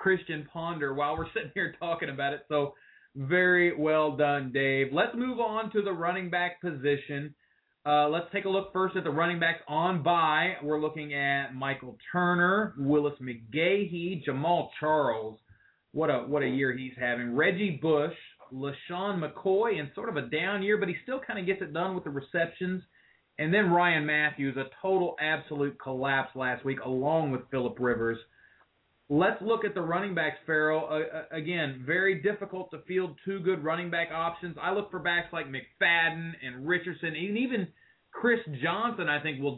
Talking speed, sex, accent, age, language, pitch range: 180 wpm, male, American, 30-49, English, 145-190 Hz